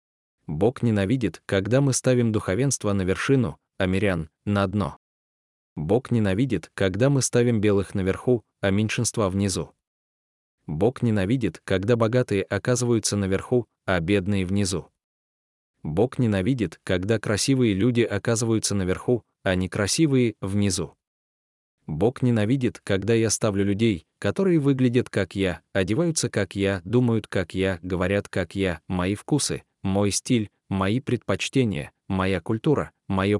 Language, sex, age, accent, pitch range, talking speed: Russian, male, 20-39, native, 95-120 Hz, 125 wpm